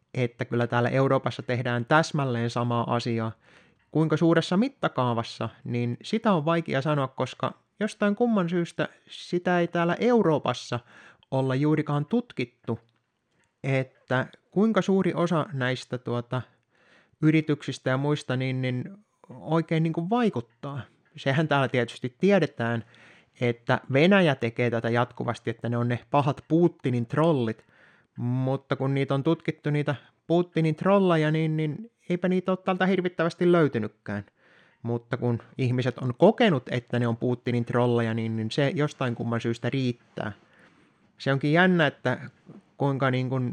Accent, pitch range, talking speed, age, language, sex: native, 120-165 Hz, 135 wpm, 20-39, Finnish, male